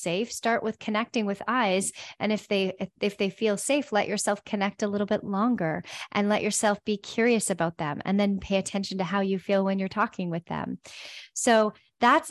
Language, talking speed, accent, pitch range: English, 210 wpm, American, 200-245 Hz